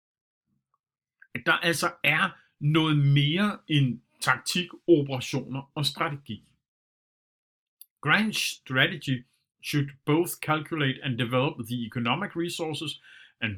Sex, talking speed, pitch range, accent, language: male, 95 wpm, 125-155 Hz, native, Danish